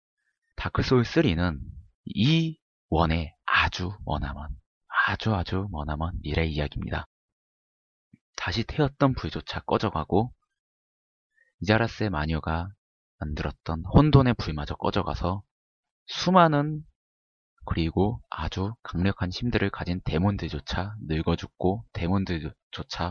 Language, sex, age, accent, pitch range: Korean, male, 30-49, native, 75-105 Hz